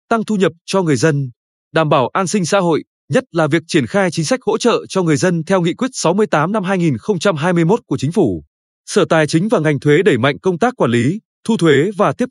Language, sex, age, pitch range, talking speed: Vietnamese, male, 20-39, 150-205 Hz, 240 wpm